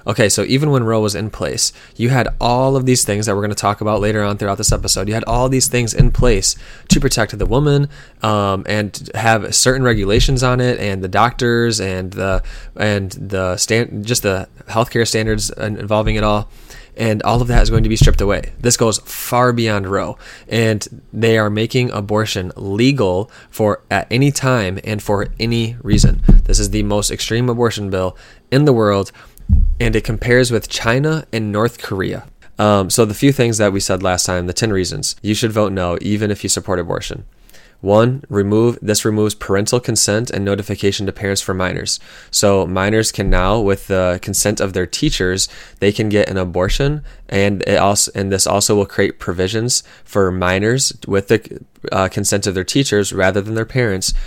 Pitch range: 100-115 Hz